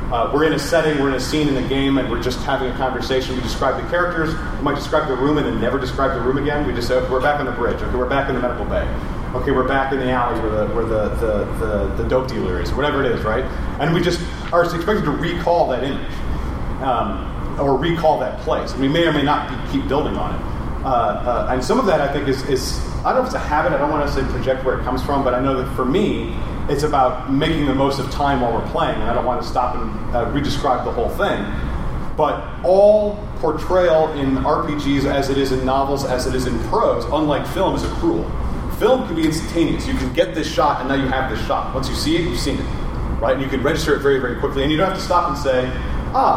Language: English